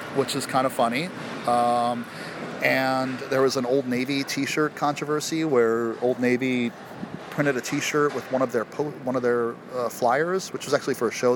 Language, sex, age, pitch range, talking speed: English, male, 30-49, 115-140 Hz, 190 wpm